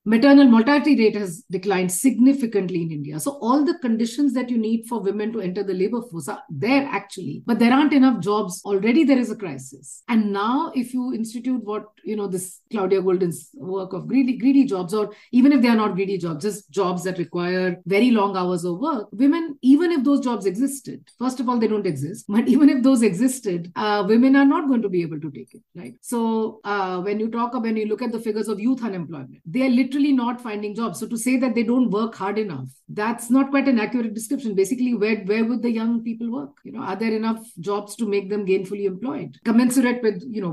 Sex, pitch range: female, 195-255 Hz